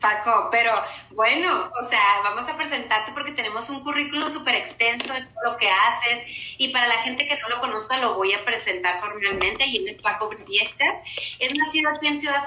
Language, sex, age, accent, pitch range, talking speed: Spanish, female, 30-49, Mexican, 210-265 Hz, 195 wpm